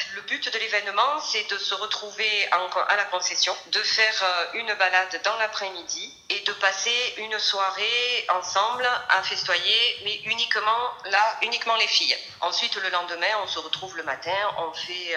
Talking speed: 160 wpm